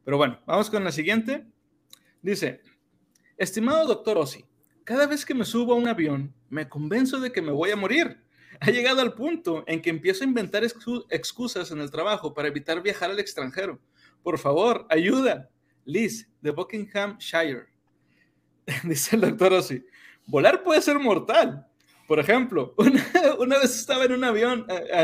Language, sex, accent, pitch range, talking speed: Spanish, male, Mexican, 155-230 Hz, 165 wpm